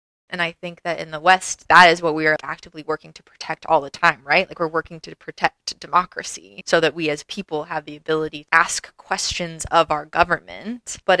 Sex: female